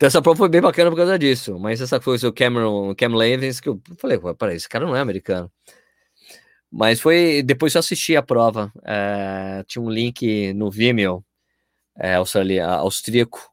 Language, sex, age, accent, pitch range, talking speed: Portuguese, male, 20-39, Brazilian, 100-145 Hz, 175 wpm